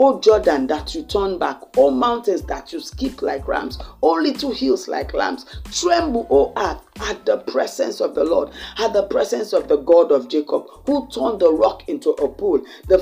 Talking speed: 200 wpm